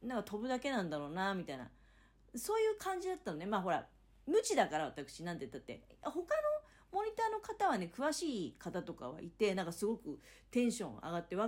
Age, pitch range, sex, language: 40-59, 170-265 Hz, female, Japanese